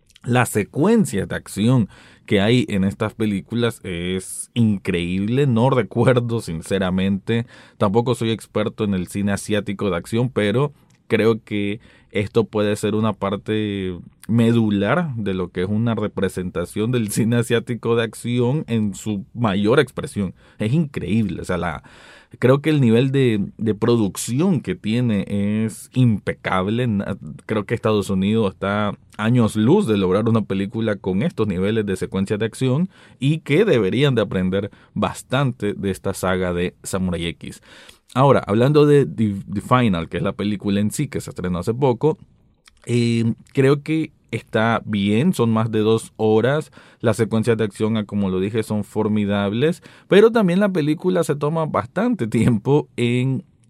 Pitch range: 100-125 Hz